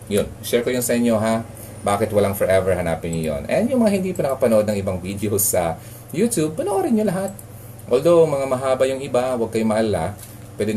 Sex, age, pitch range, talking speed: male, 30-49, 95-120 Hz, 200 wpm